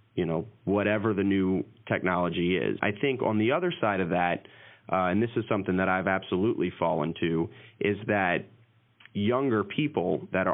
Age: 30-49